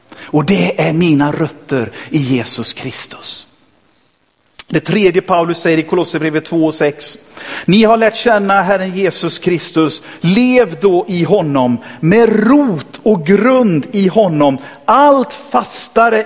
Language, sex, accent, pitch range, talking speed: Swedish, male, native, 160-230 Hz, 125 wpm